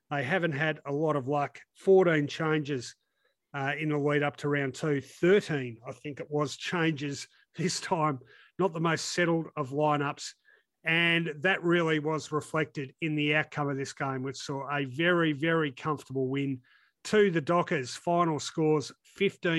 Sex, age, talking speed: male, 40-59, 170 wpm